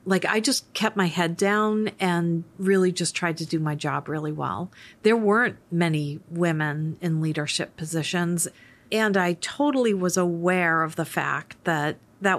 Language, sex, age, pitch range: English, female, 40-59, 170-200 Hz